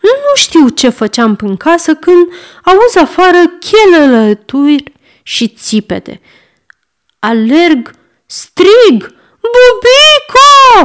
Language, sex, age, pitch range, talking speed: Romanian, female, 30-49, 225-355 Hz, 85 wpm